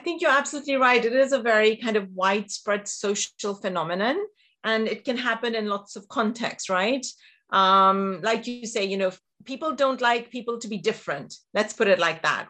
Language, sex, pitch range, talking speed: English, female, 205-255 Hz, 195 wpm